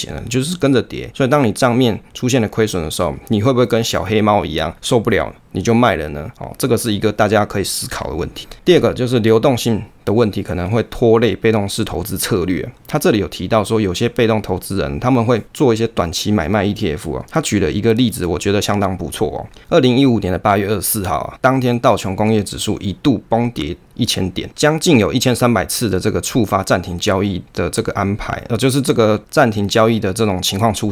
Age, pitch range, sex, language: 20-39, 95-120 Hz, male, Chinese